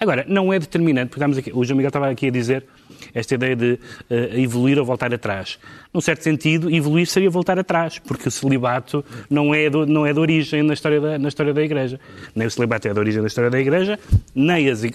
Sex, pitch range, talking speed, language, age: male, 120-155 Hz, 235 wpm, Portuguese, 30-49